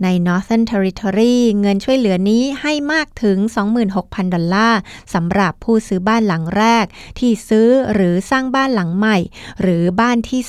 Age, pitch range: 20-39, 185-230 Hz